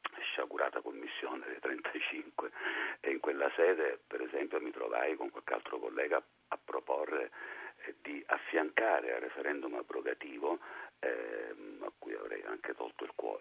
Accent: native